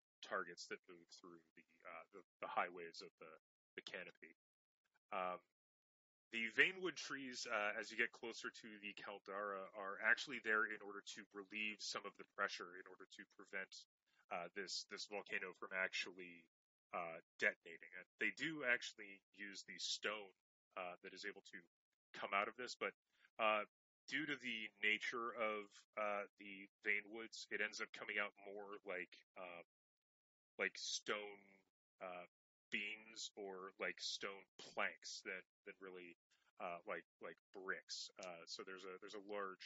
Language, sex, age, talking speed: English, male, 30-49, 155 wpm